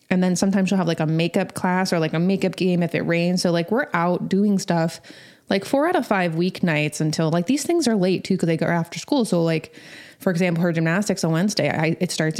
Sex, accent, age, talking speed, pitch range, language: female, American, 20-39, 250 wpm, 165-210 Hz, English